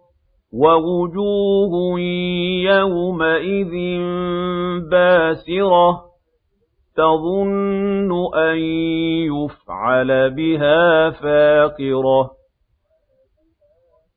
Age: 50-69